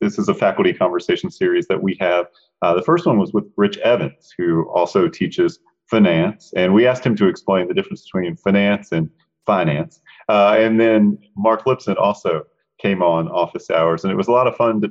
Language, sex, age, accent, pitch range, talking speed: English, male, 30-49, American, 100-135 Hz, 205 wpm